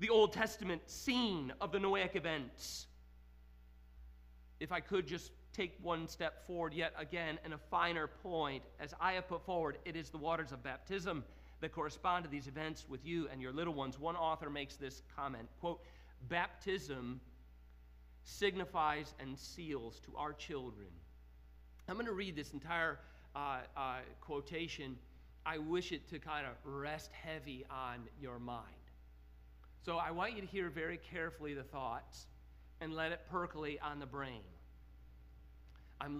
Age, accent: 40-59, American